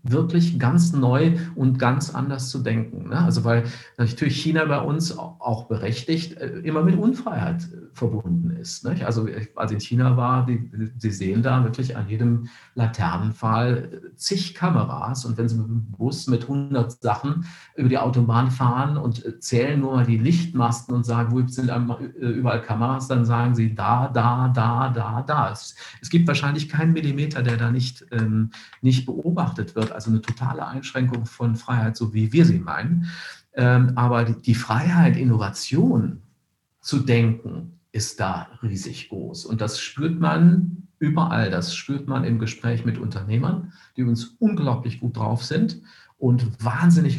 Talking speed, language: 155 wpm, German